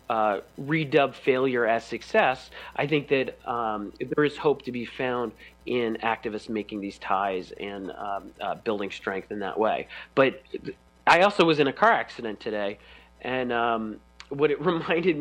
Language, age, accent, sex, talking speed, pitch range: English, 40-59, American, male, 165 wpm, 110-140 Hz